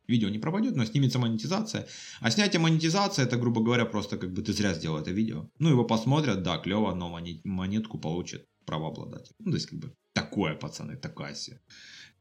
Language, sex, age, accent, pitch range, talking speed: Russian, male, 30-49, native, 100-145 Hz, 185 wpm